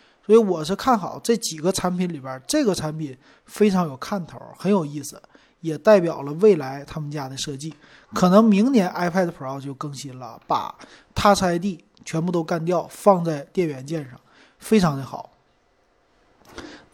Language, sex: Chinese, male